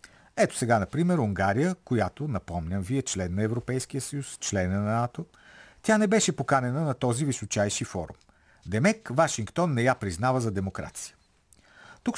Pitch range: 100-150 Hz